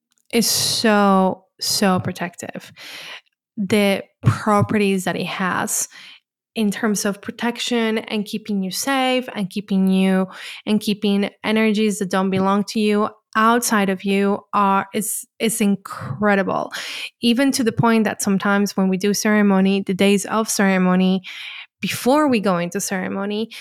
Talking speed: 135 wpm